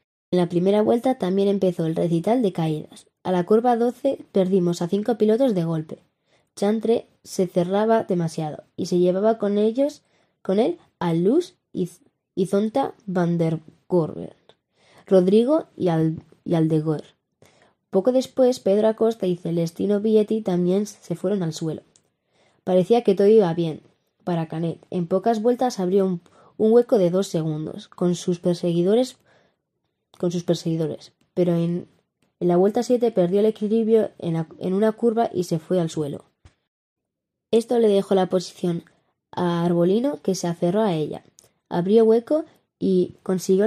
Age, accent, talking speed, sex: 20-39, Spanish, 155 wpm, female